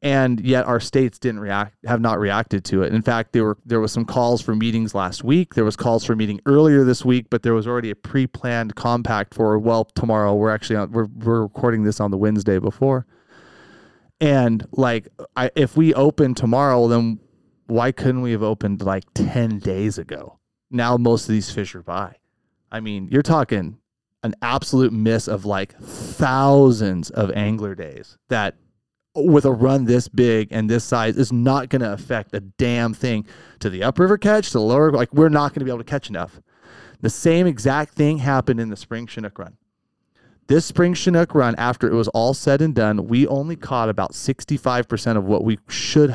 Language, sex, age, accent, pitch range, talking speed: English, male, 30-49, American, 110-135 Hz, 200 wpm